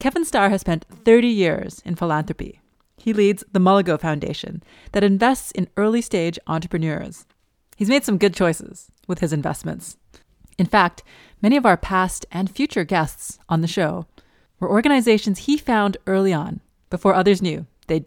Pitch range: 165-205 Hz